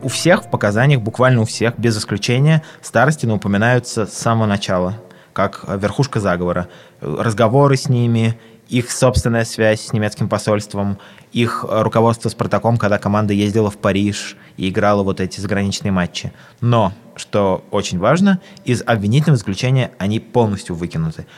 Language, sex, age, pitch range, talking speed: Russian, male, 20-39, 95-120 Hz, 145 wpm